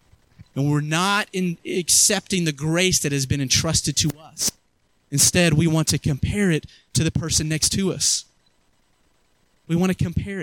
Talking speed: 160 wpm